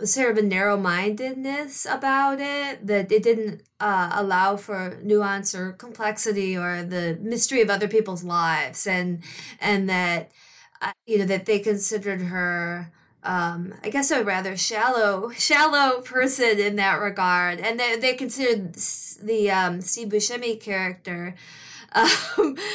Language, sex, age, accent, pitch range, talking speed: English, female, 20-39, American, 190-245 Hz, 135 wpm